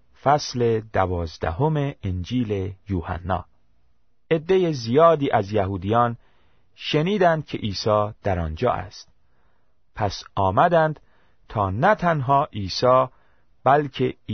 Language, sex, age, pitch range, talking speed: Persian, male, 40-59, 95-140 Hz, 90 wpm